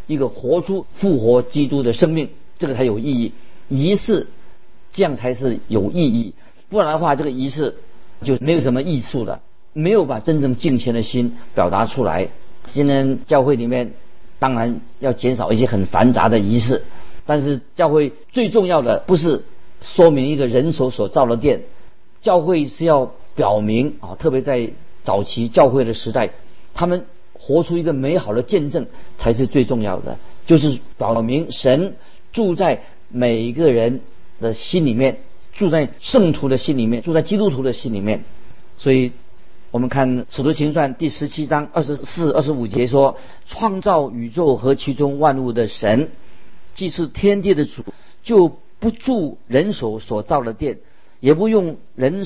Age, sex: 50-69, male